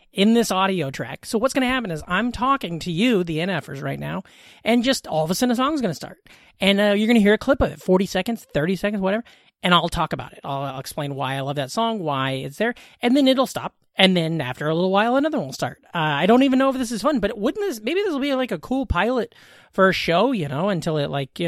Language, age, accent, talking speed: English, 30-49, American, 290 wpm